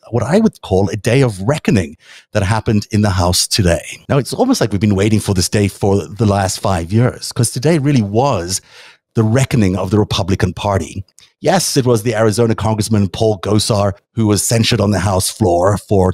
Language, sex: English, male